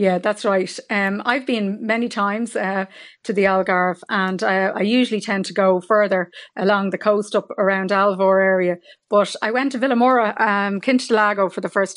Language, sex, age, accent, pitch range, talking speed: English, female, 30-49, Irish, 190-215 Hz, 190 wpm